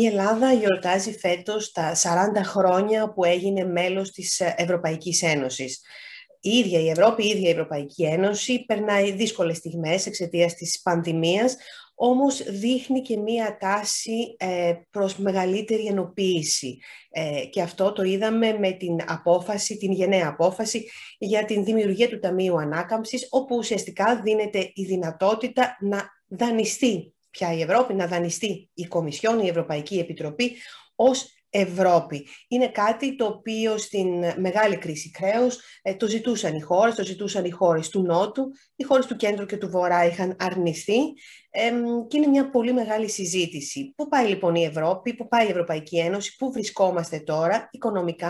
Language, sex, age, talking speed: Greek, female, 30-49, 150 wpm